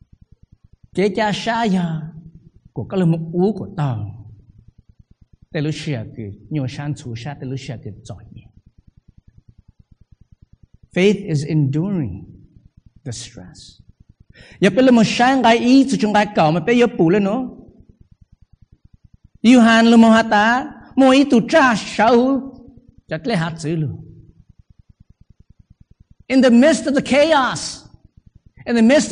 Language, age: English, 50-69